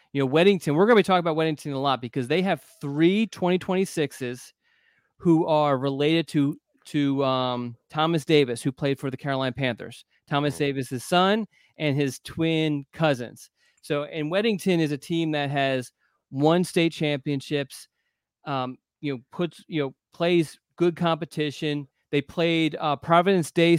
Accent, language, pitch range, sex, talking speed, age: American, English, 135-165 Hz, male, 160 wpm, 30-49